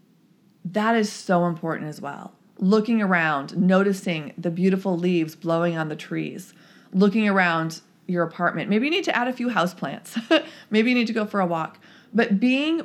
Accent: American